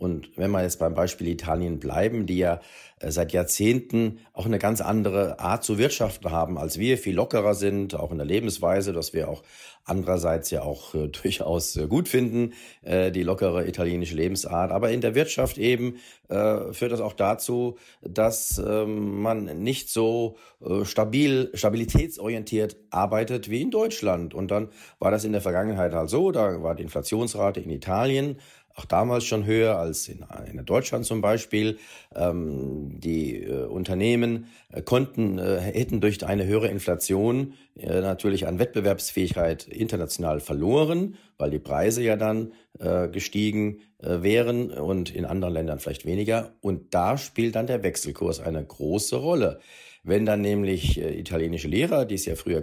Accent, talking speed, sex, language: German, 155 wpm, male, German